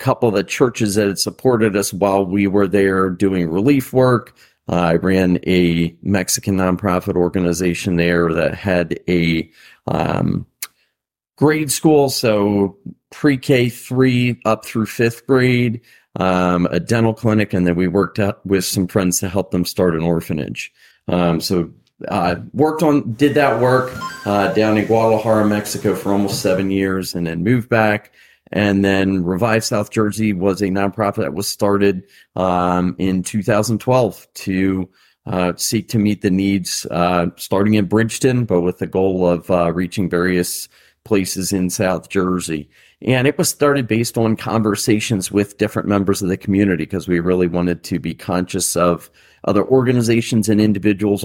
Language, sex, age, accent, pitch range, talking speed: English, male, 40-59, American, 90-110 Hz, 160 wpm